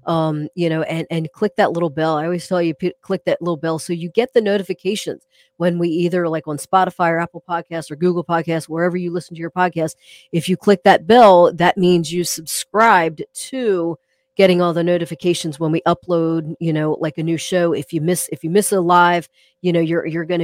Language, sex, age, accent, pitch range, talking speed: English, female, 30-49, American, 165-195 Hz, 225 wpm